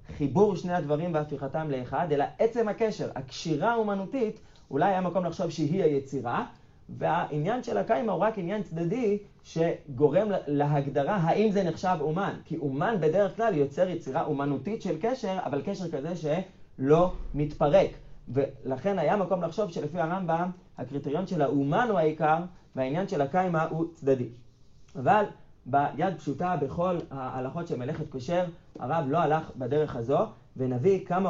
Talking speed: 140 wpm